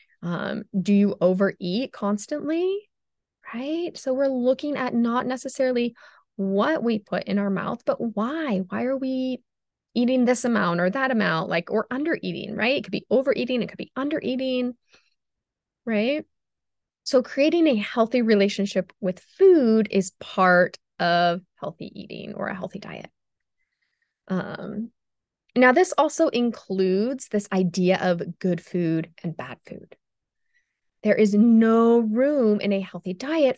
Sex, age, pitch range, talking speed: female, 20-39, 185-255 Hz, 145 wpm